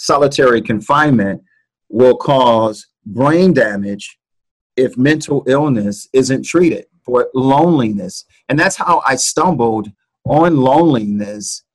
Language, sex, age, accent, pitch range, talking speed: English, male, 40-59, American, 115-150 Hz, 100 wpm